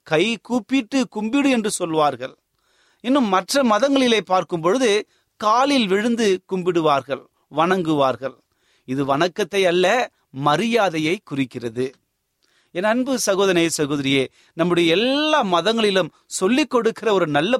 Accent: native